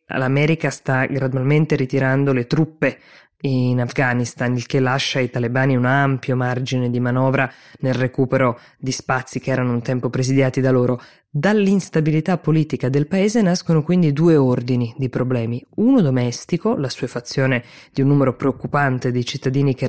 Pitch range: 130-150 Hz